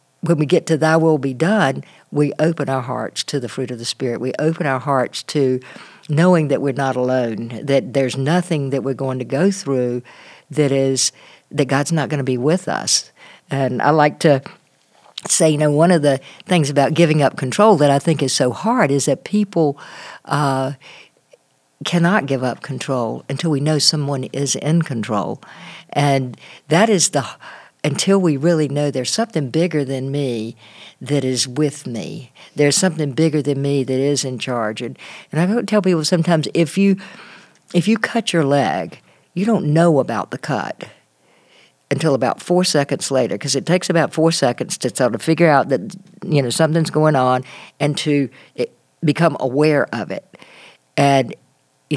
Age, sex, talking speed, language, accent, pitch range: 60-79, female, 185 wpm, English, American, 135-165 Hz